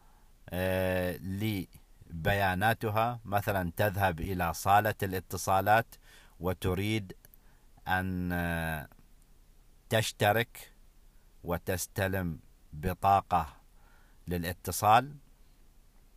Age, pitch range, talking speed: 50-69, 85-115 Hz, 45 wpm